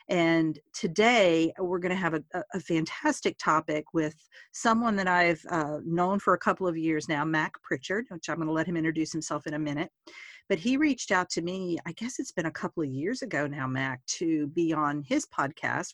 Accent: American